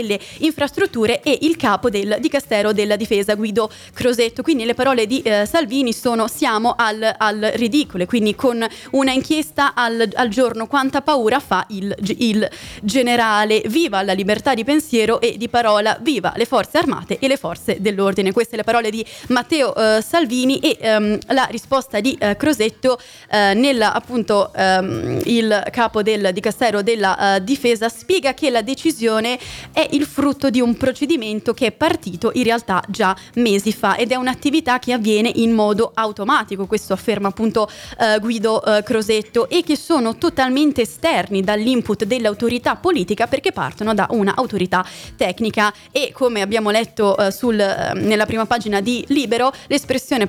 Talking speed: 160 wpm